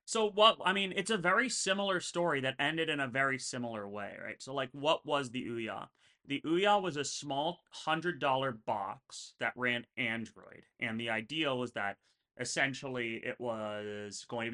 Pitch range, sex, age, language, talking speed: 105-130 Hz, male, 30-49, English, 180 wpm